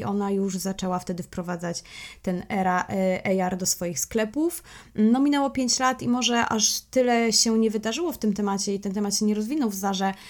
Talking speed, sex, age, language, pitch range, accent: 200 wpm, female, 20-39, Polish, 185-210 Hz, native